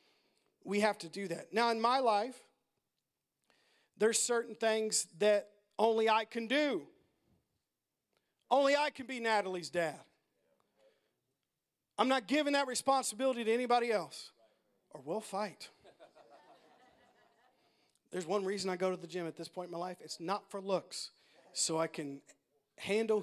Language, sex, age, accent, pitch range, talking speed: English, male, 40-59, American, 180-255 Hz, 145 wpm